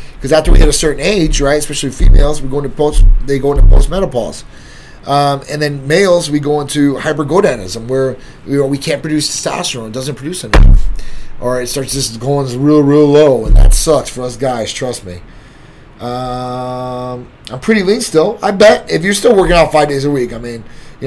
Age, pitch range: 30-49, 130-160 Hz